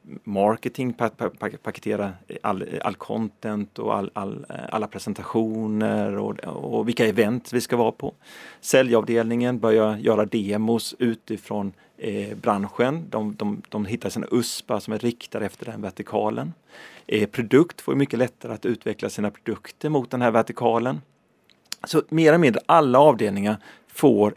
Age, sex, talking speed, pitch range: 30-49, male, 130 wpm, 110-145 Hz